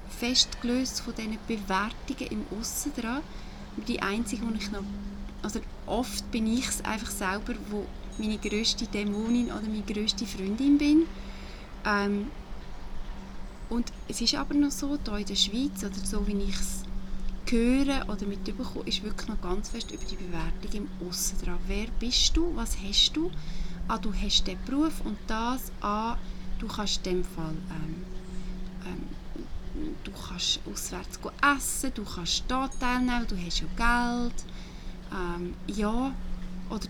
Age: 30-49